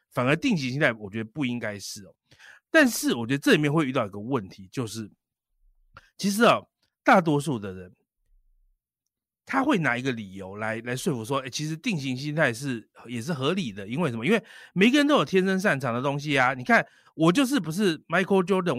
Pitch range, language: 120-185 Hz, Chinese